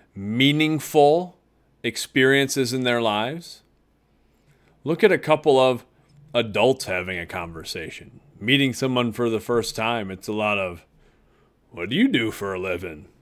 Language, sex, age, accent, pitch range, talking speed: English, male, 30-49, American, 105-145 Hz, 140 wpm